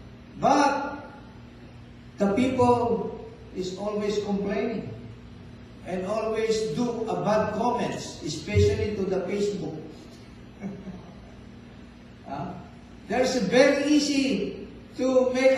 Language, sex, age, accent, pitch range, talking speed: Filipino, male, 50-69, native, 200-270 Hz, 90 wpm